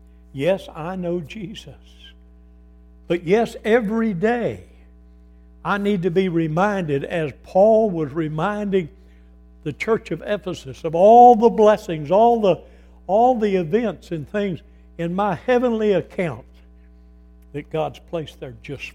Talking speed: 125 wpm